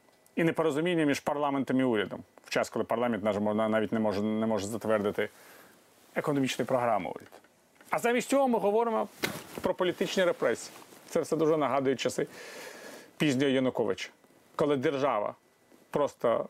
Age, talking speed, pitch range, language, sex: 40-59, 135 wpm, 110-155 Hz, Ukrainian, male